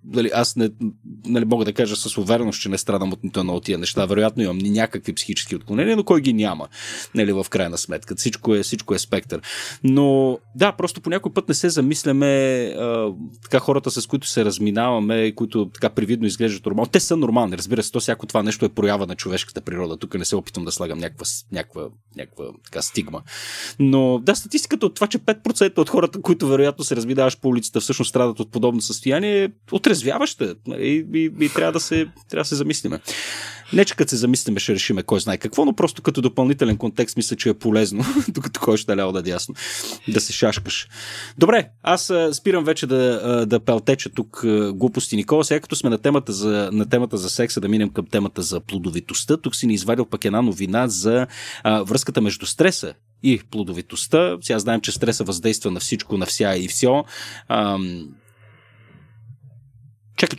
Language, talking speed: Bulgarian, 185 wpm